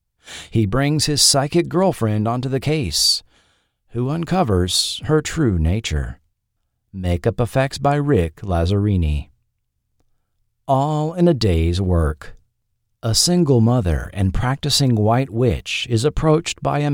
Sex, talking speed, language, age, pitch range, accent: male, 120 wpm, English, 50-69, 95-145 Hz, American